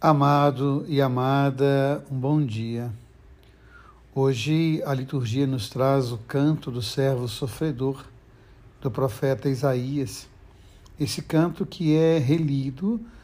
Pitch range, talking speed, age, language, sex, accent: 130-150 Hz, 110 wpm, 60-79, Portuguese, male, Brazilian